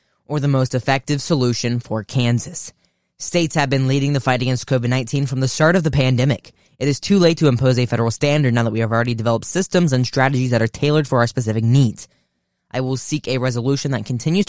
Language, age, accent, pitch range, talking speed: English, 10-29, American, 115-150 Hz, 220 wpm